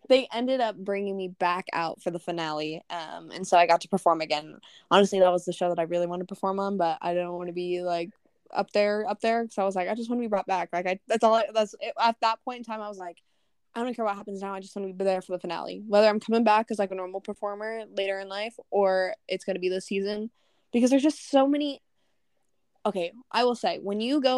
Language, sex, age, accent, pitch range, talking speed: English, female, 10-29, American, 180-220 Hz, 275 wpm